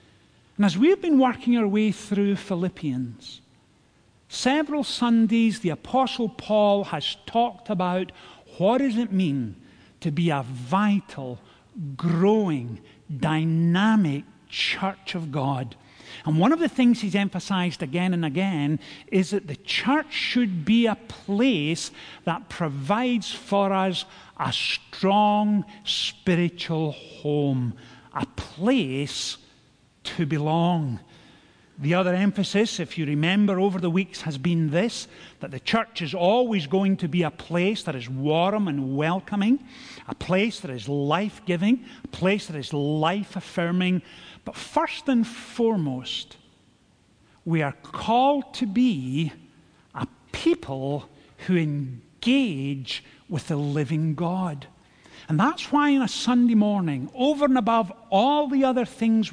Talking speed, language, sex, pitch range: 130 wpm, English, male, 150-220 Hz